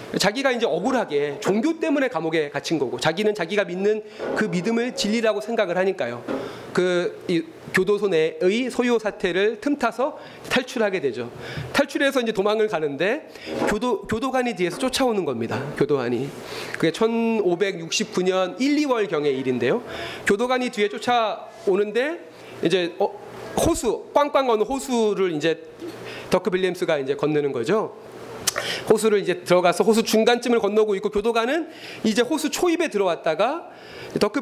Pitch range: 170-250 Hz